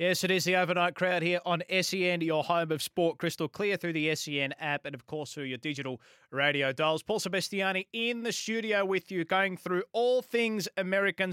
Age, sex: 20-39, male